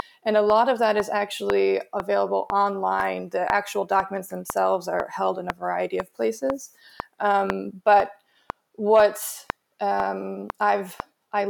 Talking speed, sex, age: 140 wpm, female, 20-39